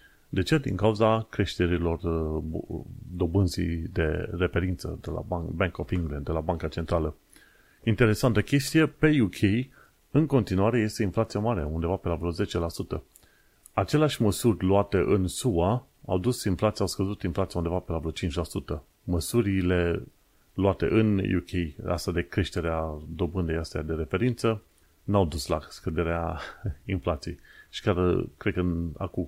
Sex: male